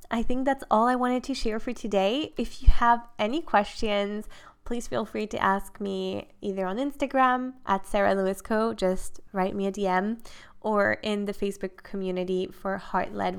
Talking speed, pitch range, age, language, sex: 185 wpm, 190-225 Hz, 10-29, English, female